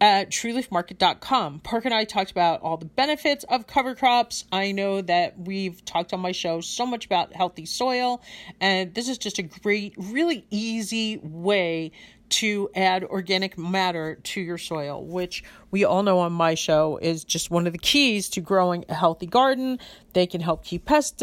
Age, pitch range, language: 40-59, 175-215 Hz, English